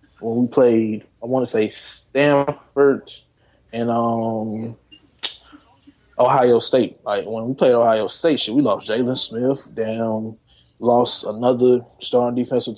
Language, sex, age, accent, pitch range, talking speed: English, male, 20-39, American, 115-145 Hz, 130 wpm